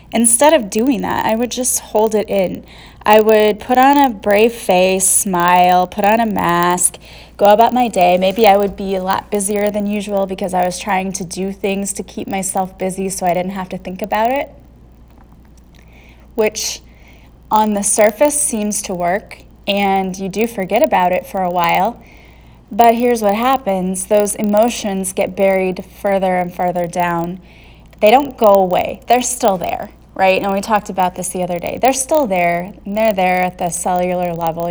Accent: American